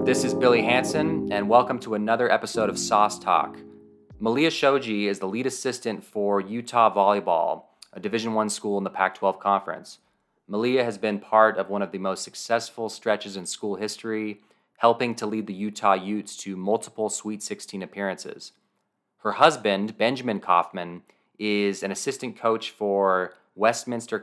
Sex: male